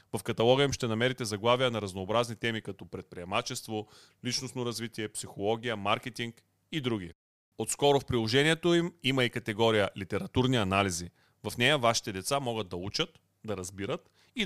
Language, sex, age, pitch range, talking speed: Bulgarian, male, 30-49, 105-135 Hz, 150 wpm